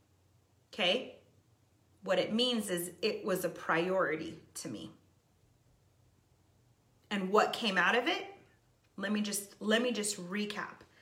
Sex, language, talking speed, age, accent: female, English, 115 wpm, 30-49, American